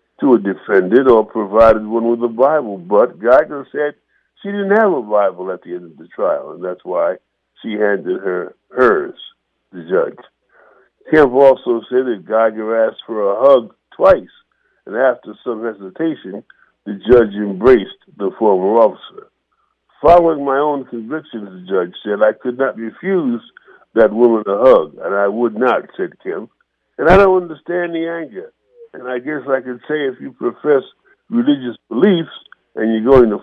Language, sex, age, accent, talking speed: English, male, 60-79, American, 170 wpm